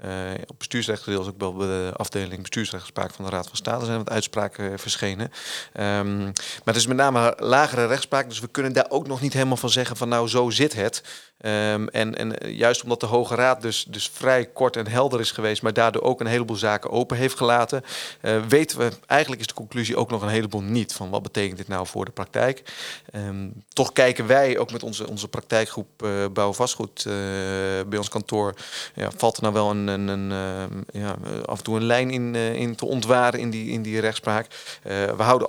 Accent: Dutch